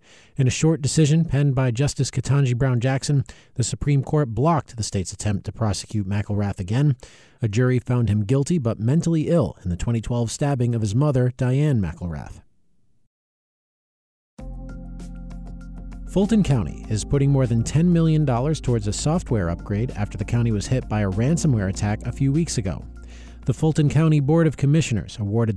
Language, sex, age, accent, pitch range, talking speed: English, male, 40-59, American, 105-145 Hz, 165 wpm